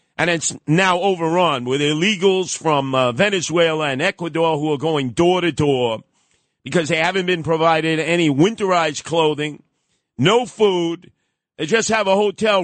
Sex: male